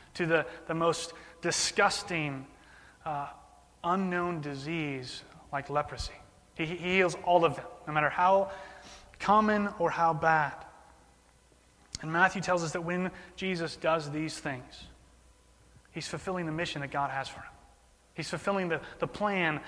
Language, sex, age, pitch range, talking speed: English, male, 30-49, 145-175 Hz, 145 wpm